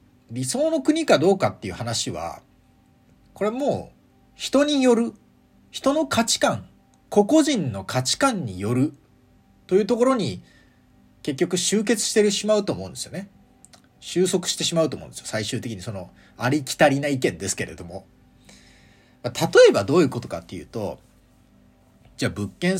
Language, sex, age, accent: Japanese, male, 40-59, native